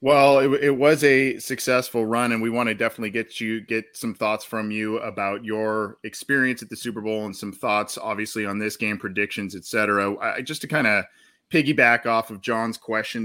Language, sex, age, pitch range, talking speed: English, male, 20-39, 110-130 Hz, 200 wpm